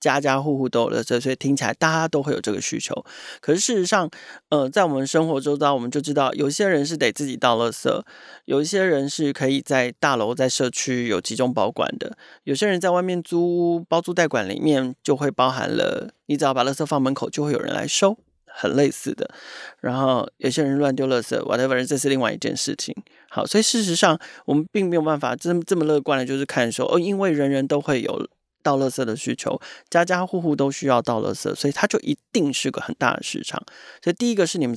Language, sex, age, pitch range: Chinese, male, 30-49, 130-165 Hz